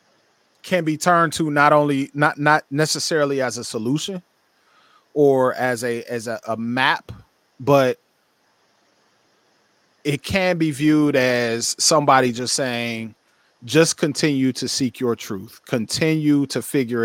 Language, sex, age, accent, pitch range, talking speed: English, male, 30-49, American, 115-150 Hz, 130 wpm